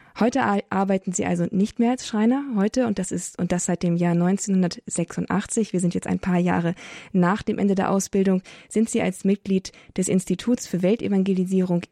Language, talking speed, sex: German, 185 wpm, female